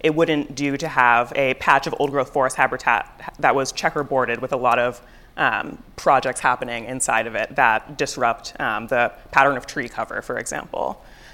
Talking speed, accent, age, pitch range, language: 185 wpm, American, 30-49, 135-175 Hz, English